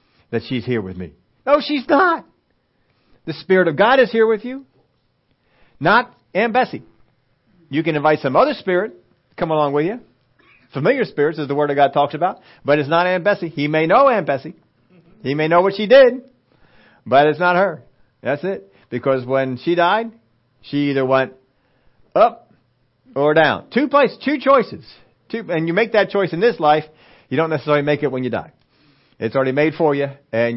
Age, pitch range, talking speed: 50-69, 125-190 Hz, 190 wpm